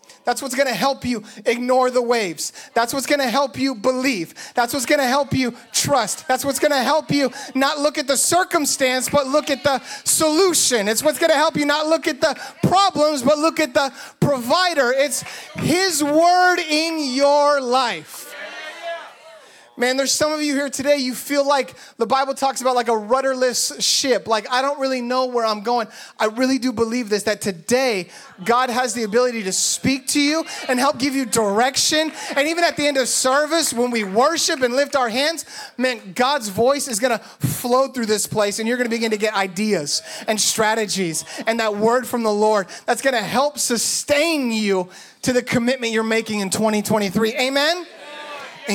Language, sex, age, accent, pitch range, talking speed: English, male, 30-49, American, 205-280 Hz, 195 wpm